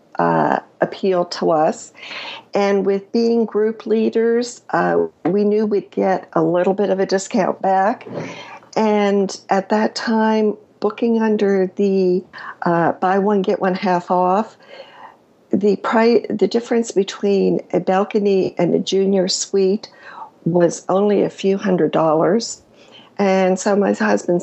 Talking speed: 140 wpm